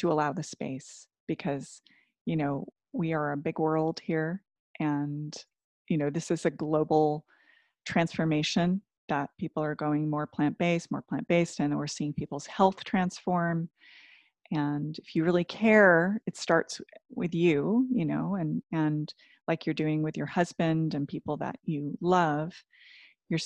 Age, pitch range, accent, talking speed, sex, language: 30-49, 150-180 Hz, American, 155 wpm, female, English